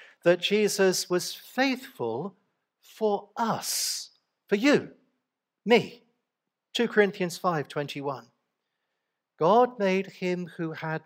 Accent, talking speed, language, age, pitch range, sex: British, 90 wpm, English, 50-69, 175-235 Hz, male